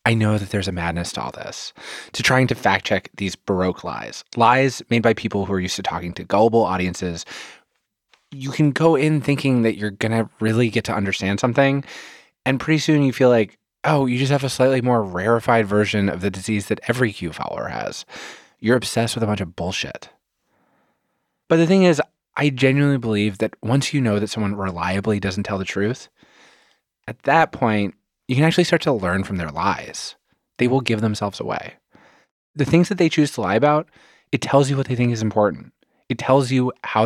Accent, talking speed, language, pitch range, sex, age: American, 205 wpm, English, 100-135 Hz, male, 20-39